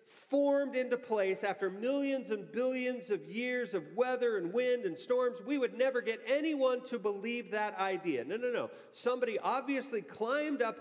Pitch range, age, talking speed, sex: 155-230 Hz, 40-59, 170 wpm, male